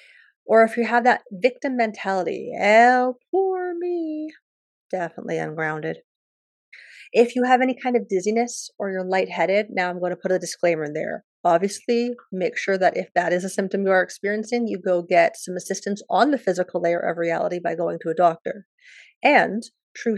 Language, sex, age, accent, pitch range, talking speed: English, female, 30-49, American, 185-245 Hz, 180 wpm